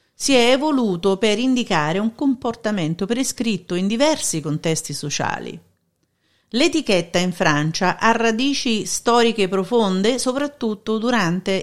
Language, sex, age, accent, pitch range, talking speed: Italian, female, 50-69, native, 180-250 Hz, 110 wpm